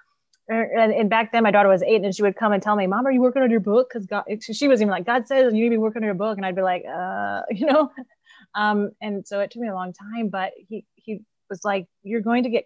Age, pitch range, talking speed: 20-39, 185-220 Hz, 295 wpm